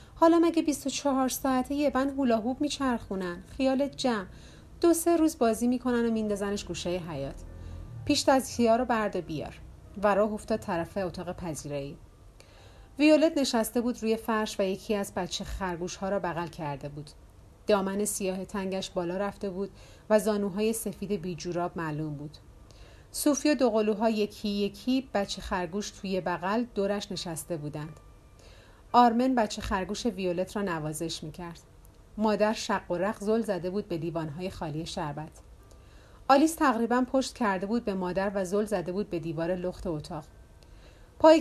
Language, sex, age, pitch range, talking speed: Persian, female, 30-49, 175-225 Hz, 150 wpm